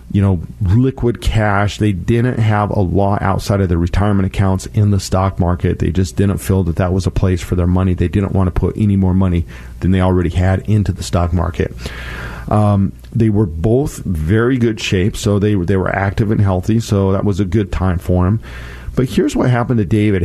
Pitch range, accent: 90-110 Hz, American